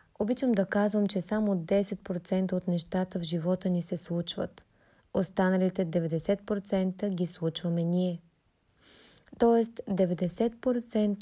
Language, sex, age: Bulgarian, female, 20-39